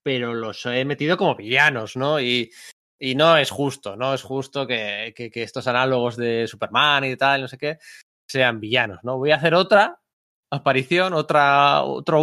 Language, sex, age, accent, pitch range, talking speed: Spanish, male, 20-39, Spanish, 125-170 Hz, 180 wpm